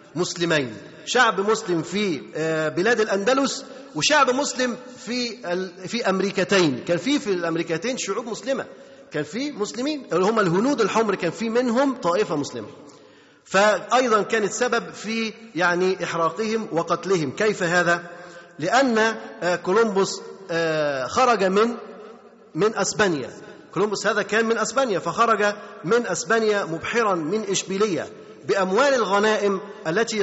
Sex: male